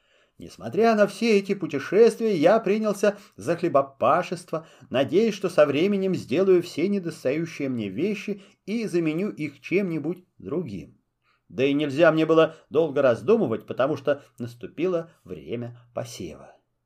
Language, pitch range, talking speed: Russian, 145-200 Hz, 125 wpm